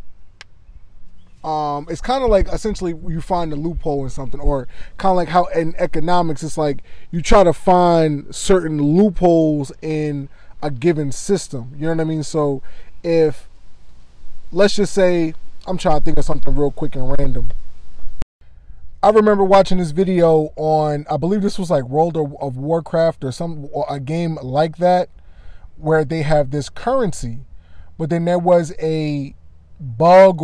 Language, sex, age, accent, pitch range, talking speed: English, male, 20-39, American, 140-180 Hz, 165 wpm